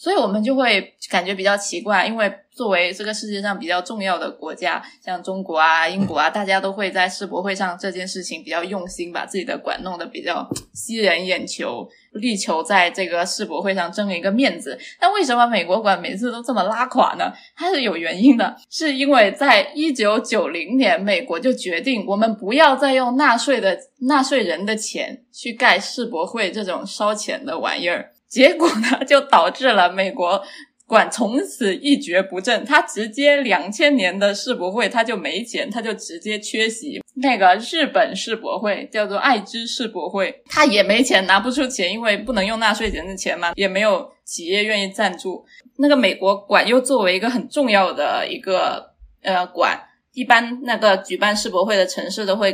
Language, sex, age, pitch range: Chinese, female, 20-39, 190-260 Hz